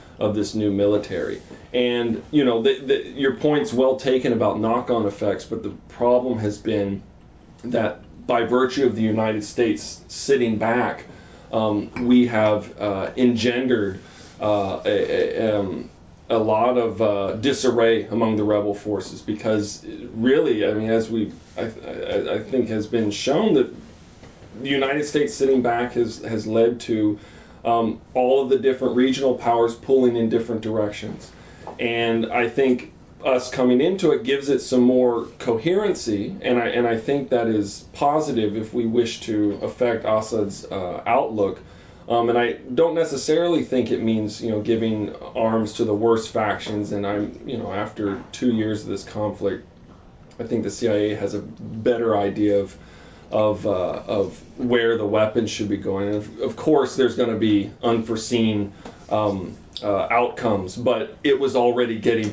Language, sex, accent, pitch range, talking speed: English, male, American, 105-125 Hz, 165 wpm